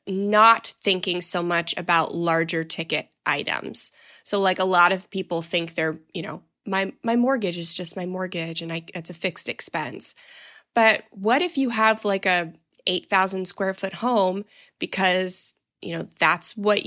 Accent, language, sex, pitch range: American, English, female, 170-225 Hz